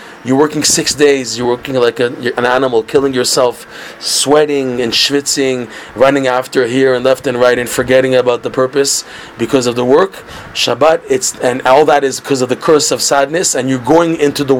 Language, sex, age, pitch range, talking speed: English, male, 30-49, 130-160 Hz, 200 wpm